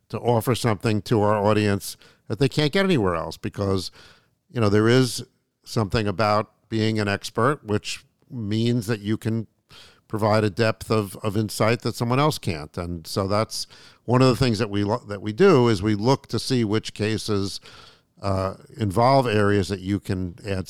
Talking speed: 185 wpm